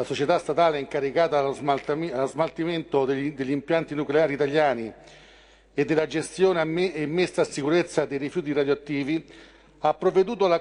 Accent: native